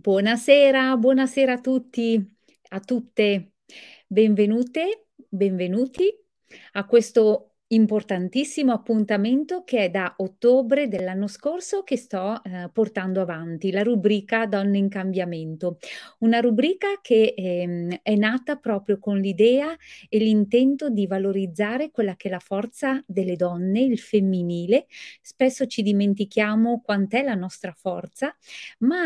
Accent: native